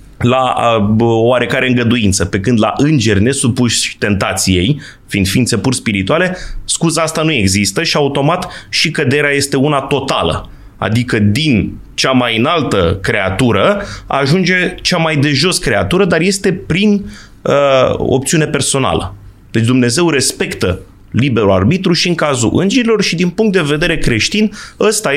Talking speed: 140 wpm